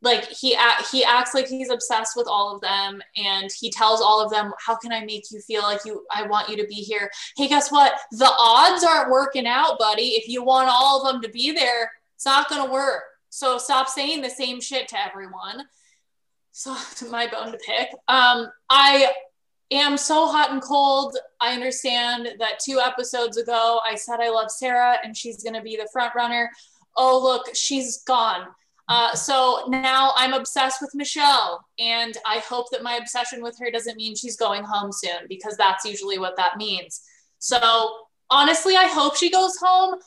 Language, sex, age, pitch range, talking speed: English, female, 20-39, 230-275 Hz, 195 wpm